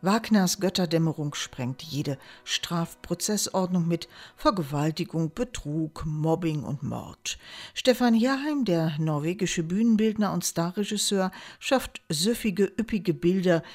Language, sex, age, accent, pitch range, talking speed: German, female, 50-69, German, 165-215 Hz, 95 wpm